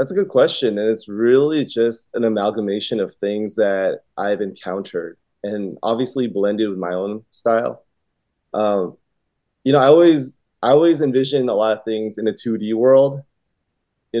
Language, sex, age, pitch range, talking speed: English, male, 20-39, 100-130 Hz, 165 wpm